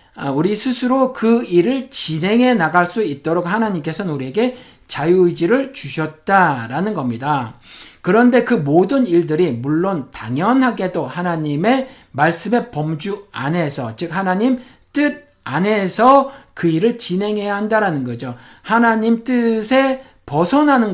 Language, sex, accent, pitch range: Korean, male, native, 150-230 Hz